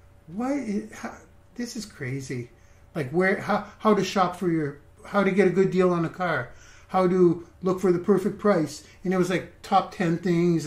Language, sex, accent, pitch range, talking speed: English, male, American, 140-205 Hz, 195 wpm